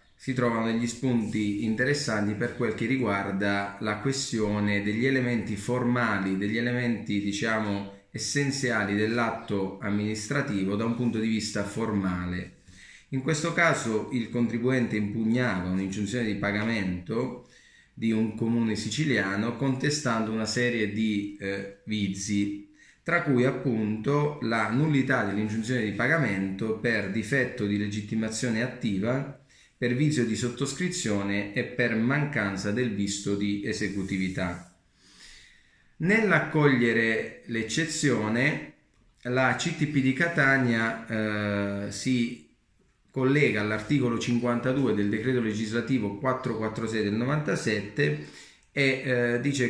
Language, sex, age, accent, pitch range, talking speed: Italian, male, 30-49, native, 105-130 Hz, 105 wpm